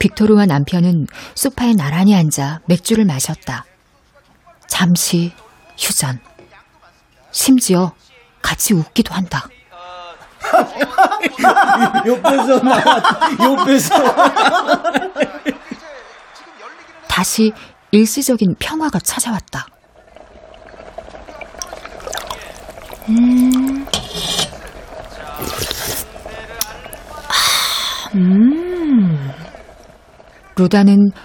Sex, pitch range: female, 170-235 Hz